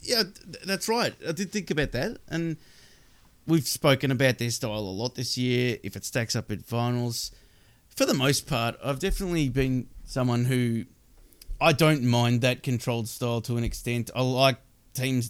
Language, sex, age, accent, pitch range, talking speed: English, male, 30-49, Australian, 115-145 Hz, 175 wpm